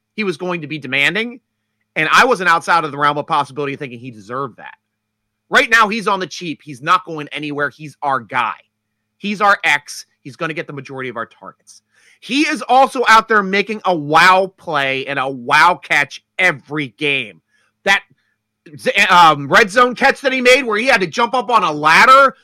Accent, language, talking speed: American, English, 205 wpm